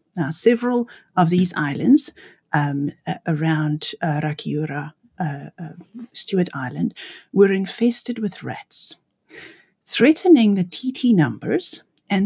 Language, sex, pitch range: English, female, 160-230 Hz